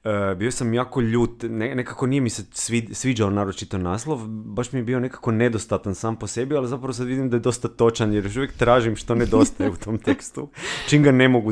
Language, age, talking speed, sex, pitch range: Croatian, 30-49, 215 wpm, male, 115-135 Hz